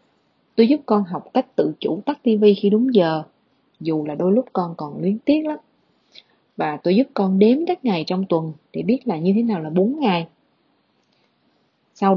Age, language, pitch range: 20-39, Vietnamese, 175-225 Hz